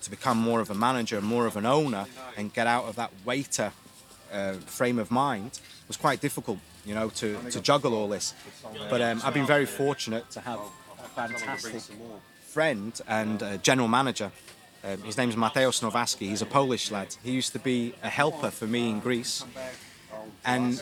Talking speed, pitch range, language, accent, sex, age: 185 wpm, 115-140 Hz, English, British, male, 30-49